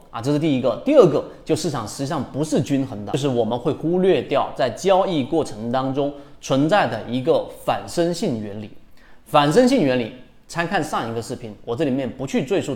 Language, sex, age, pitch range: Chinese, male, 30-49, 120-170 Hz